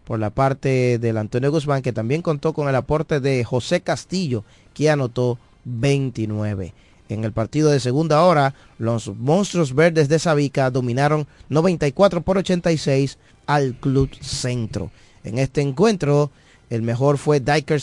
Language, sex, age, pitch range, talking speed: Spanish, male, 30-49, 120-150 Hz, 145 wpm